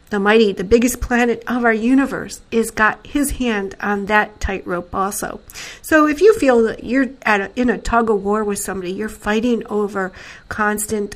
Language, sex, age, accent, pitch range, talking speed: English, female, 50-69, American, 195-235 Hz, 190 wpm